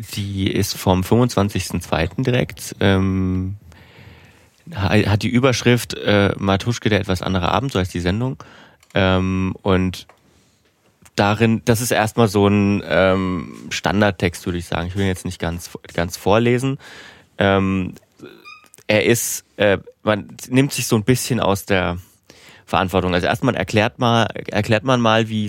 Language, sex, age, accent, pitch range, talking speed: German, male, 30-49, German, 95-110 Hz, 140 wpm